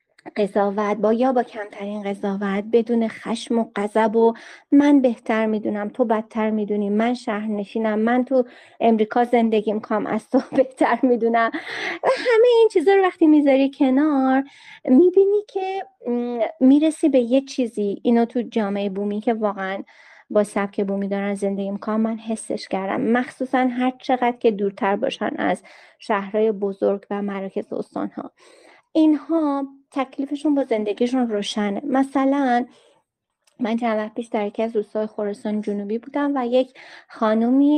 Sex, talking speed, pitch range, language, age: female, 140 wpm, 210-270 Hz, Persian, 30-49